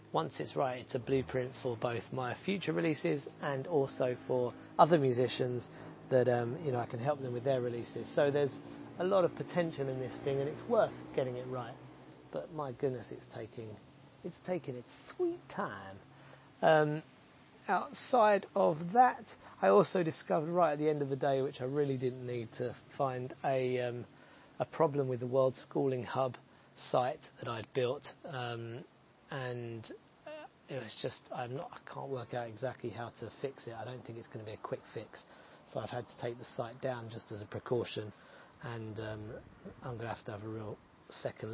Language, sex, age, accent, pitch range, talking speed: English, male, 40-59, British, 115-140 Hz, 195 wpm